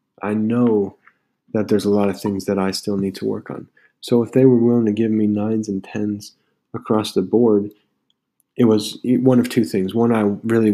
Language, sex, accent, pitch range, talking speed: English, male, American, 100-115 Hz, 210 wpm